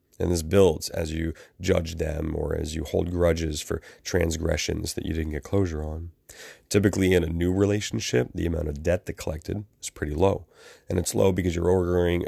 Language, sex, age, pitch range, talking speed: English, male, 30-49, 80-90 Hz, 195 wpm